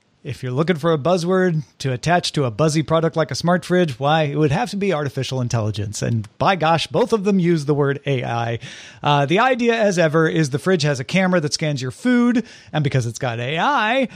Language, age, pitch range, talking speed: English, 40-59, 145-195 Hz, 230 wpm